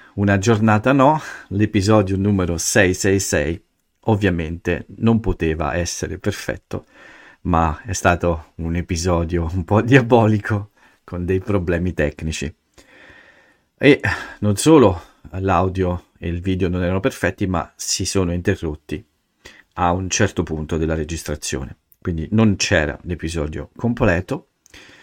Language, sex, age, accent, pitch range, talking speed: Italian, male, 50-69, native, 85-105 Hz, 115 wpm